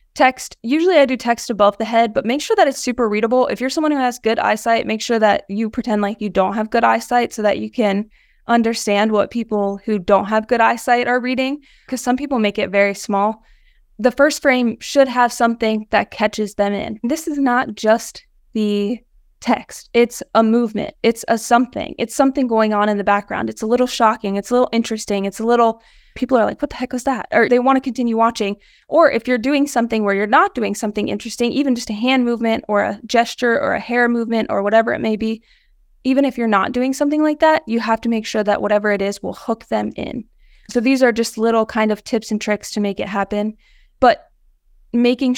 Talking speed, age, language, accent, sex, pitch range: 230 wpm, 20-39, English, American, female, 215-255 Hz